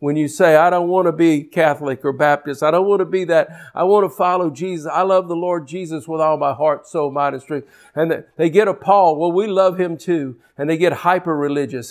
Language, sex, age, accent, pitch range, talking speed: English, male, 50-69, American, 135-180 Hz, 250 wpm